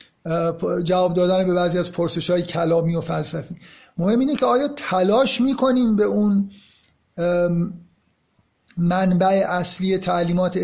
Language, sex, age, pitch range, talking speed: Persian, male, 50-69, 170-200 Hz, 115 wpm